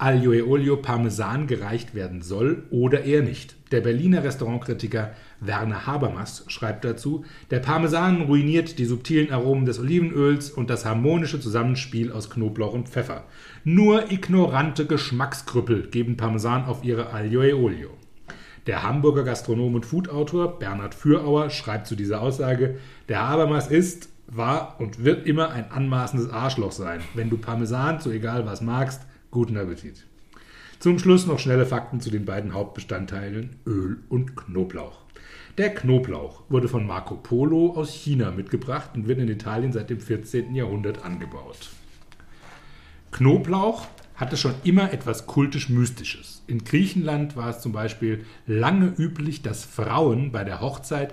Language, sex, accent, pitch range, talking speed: German, male, German, 110-145 Hz, 145 wpm